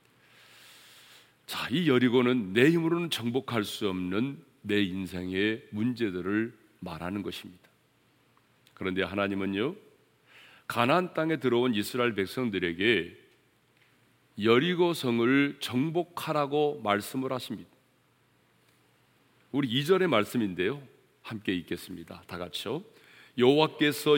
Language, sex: Korean, male